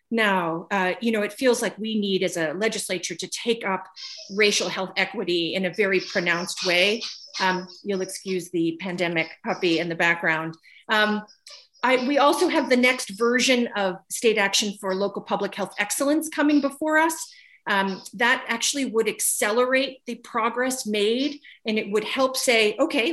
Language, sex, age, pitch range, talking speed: English, female, 40-59, 200-255 Hz, 165 wpm